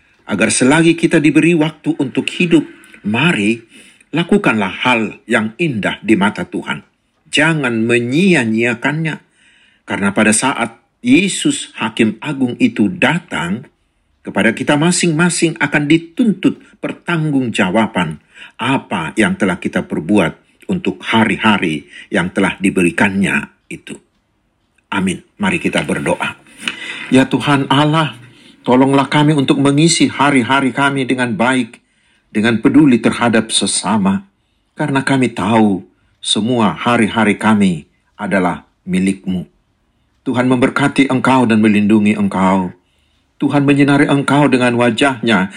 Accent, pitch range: native, 105-150 Hz